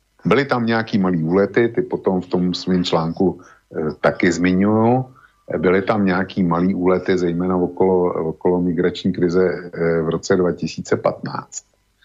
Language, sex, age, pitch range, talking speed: Slovak, male, 50-69, 85-110 Hz, 140 wpm